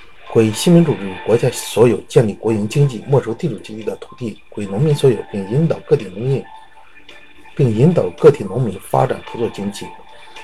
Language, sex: Chinese, male